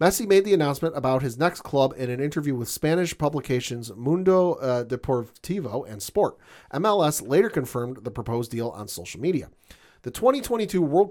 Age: 40-59